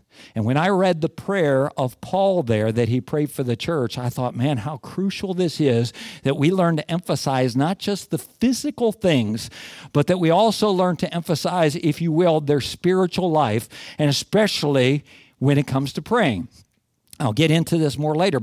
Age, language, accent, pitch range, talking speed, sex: 50-69, English, American, 120-165 Hz, 190 wpm, male